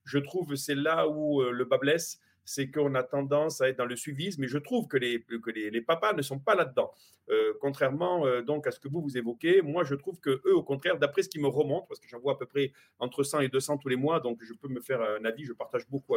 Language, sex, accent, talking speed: French, male, French, 280 wpm